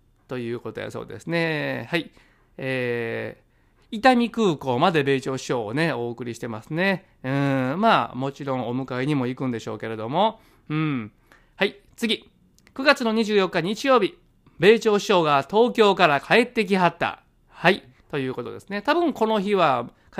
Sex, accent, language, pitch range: male, native, Japanese, 130-200 Hz